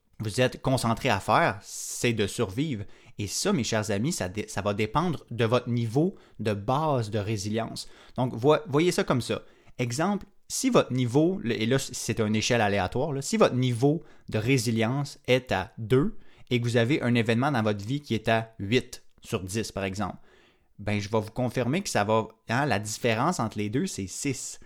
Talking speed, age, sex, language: 195 wpm, 20-39, male, French